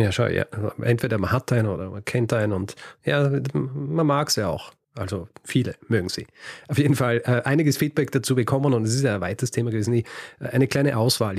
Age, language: 40-59, German